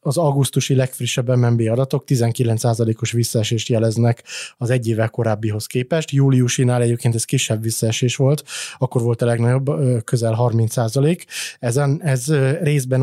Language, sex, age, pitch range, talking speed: Hungarian, male, 20-39, 120-135 Hz, 130 wpm